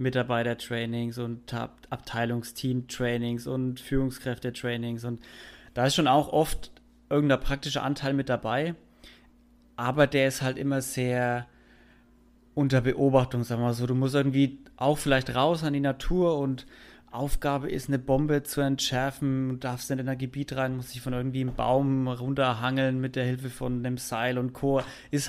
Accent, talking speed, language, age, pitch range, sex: German, 165 wpm, German, 30-49, 125-145 Hz, male